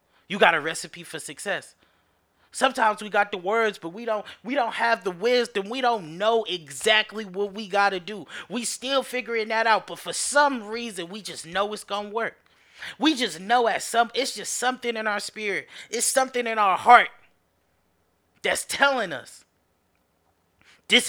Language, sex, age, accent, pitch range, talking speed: English, male, 20-39, American, 180-235 Hz, 180 wpm